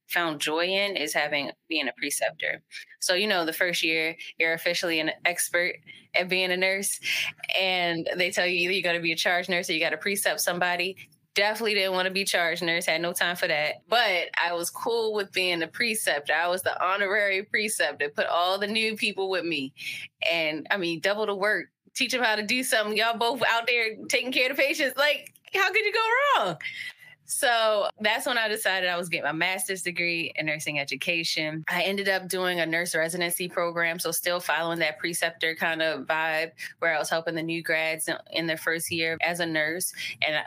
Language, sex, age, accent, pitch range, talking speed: English, female, 10-29, American, 160-205 Hz, 210 wpm